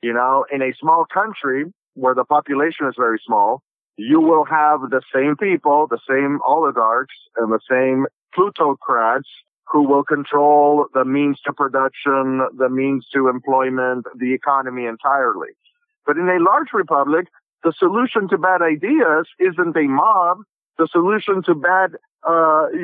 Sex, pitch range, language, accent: male, 135-175 Hz, English, American